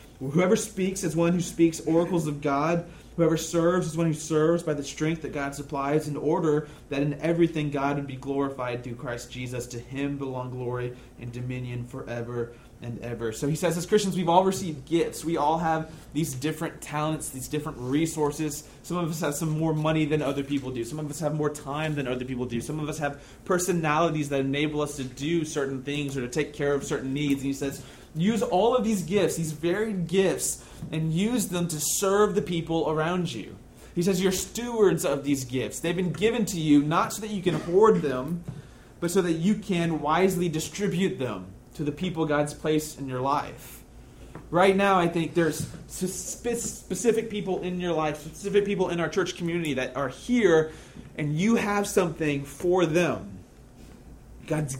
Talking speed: 200 wpm